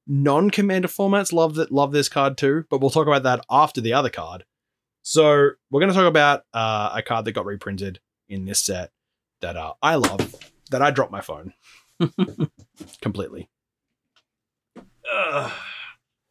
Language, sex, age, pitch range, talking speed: English, male, 20-39, 125-160 Hz, 160 wpm